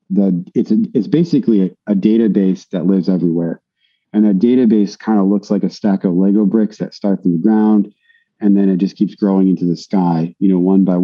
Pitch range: 95-105 Hz